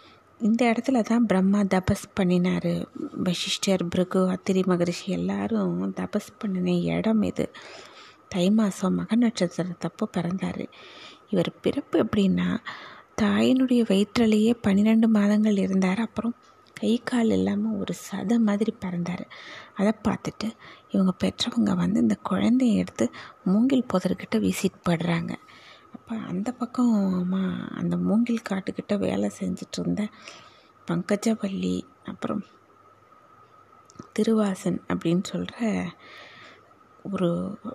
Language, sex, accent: Tamil, female, native